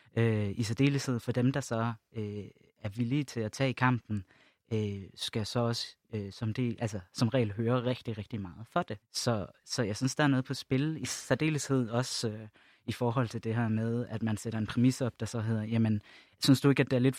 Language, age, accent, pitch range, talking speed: Danish, 20-39, native, 110-130 Hz, 235 wpm